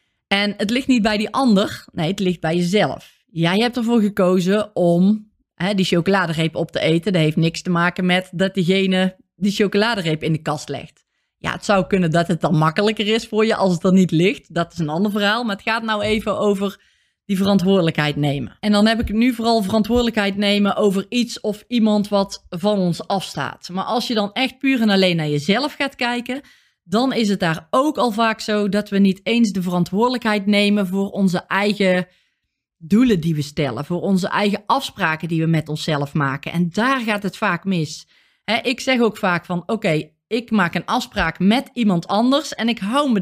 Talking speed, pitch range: 210 wpm, 175-220 Hz